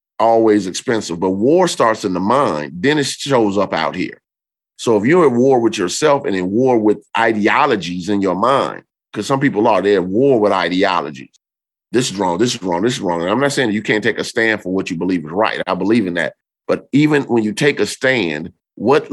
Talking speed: 230 wpm